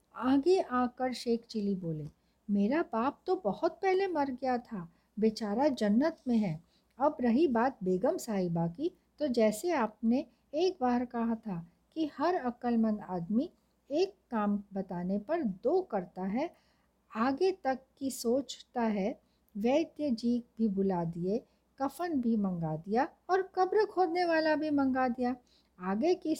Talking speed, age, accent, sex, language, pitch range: 145 wpm, 60-79, native, female, Hindi, 210-290 Hz